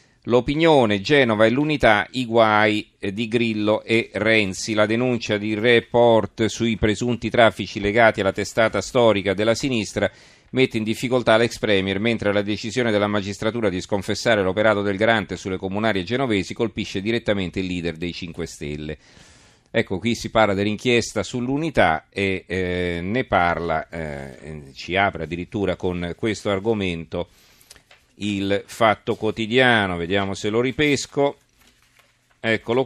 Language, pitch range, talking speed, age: Italian, 95-115 Hz, 135 wpm, 40-59